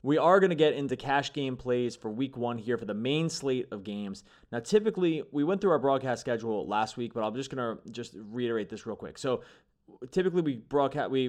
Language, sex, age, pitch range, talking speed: English, male, 20-39, 115-140 Hz, 235 wpm